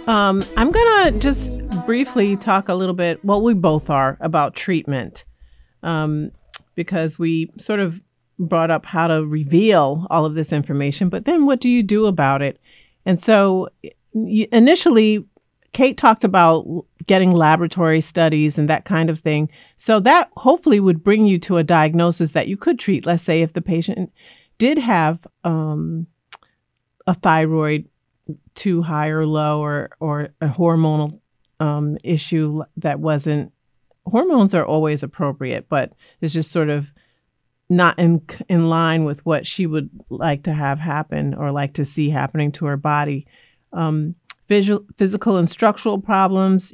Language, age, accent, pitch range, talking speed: English, 40-59, American, 155-190 Hz, 155 wpm